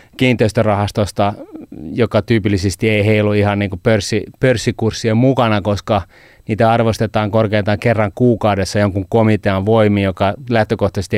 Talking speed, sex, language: 105 wpm, male, Finnish